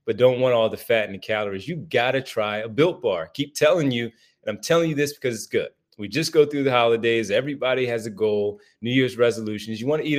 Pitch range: 110-140 Hz